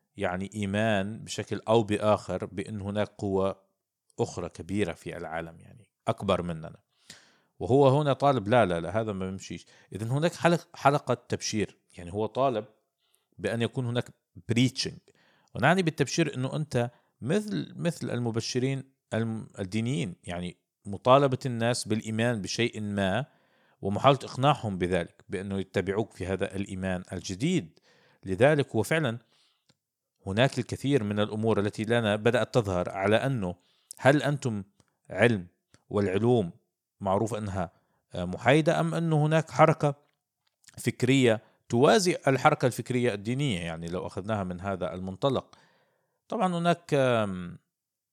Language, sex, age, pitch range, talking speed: Arabic, male, 50-69, 95-130 Hz, 120 wpm